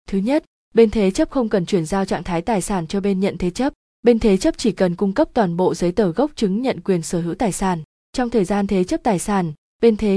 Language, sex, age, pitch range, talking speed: Vietnamese, female, 20-39, 185-230 Hz, 270 wpm